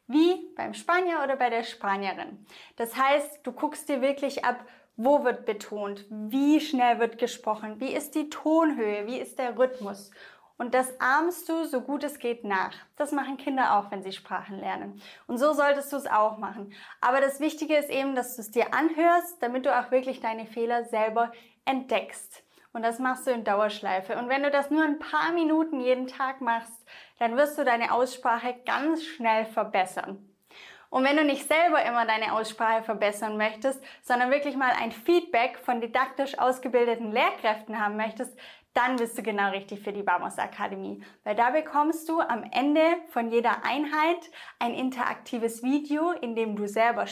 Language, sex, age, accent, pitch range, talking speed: English, female, 20-39, German, 225-290 Hz, 180 wpm